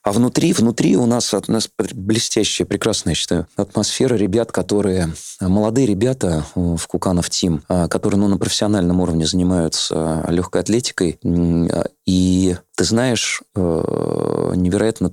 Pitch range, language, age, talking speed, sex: 80-100 Hz, Russian, 20-39, 125 wpm, male